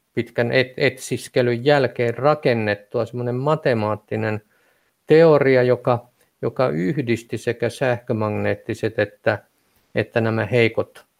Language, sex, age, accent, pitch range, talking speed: Finnish, male, 50-69, native, 110-125 Hz, 85 wpm